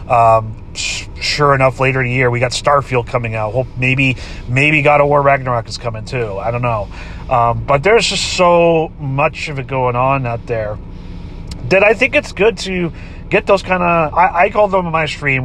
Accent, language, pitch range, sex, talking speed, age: American, English, 120-170 Hz, male, 215 wpm, 30-49